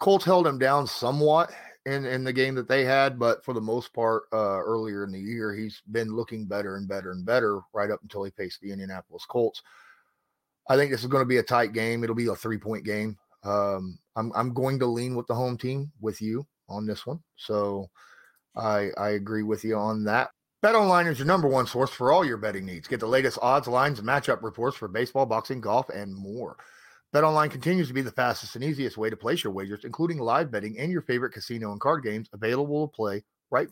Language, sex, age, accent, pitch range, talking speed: English, male, 30-49, American, 105-145 Hz, 230 wpm